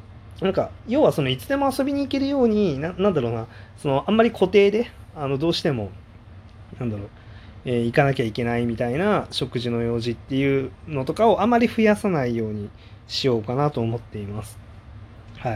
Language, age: Japanese, 20-39